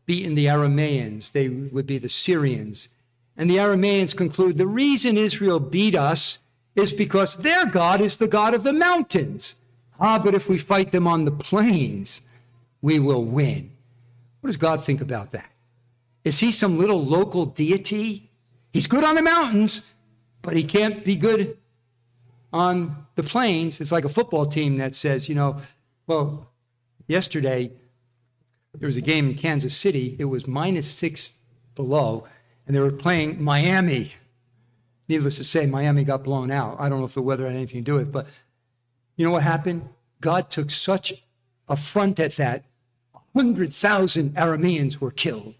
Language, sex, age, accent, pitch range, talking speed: English, male, 50-69, American, 125-195 Hz, 165 wpm